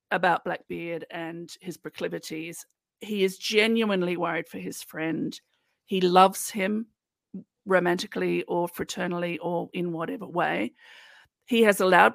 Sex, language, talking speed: female, English, 125 wpm